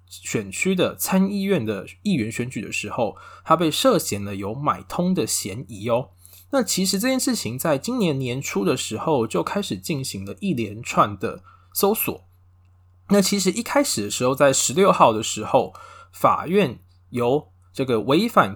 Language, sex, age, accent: Chinese, male, 20-39, native